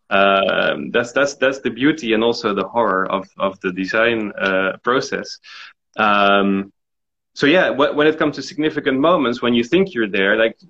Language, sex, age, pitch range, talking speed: English, male, 30-49, 105-130 Hz, 180 wpm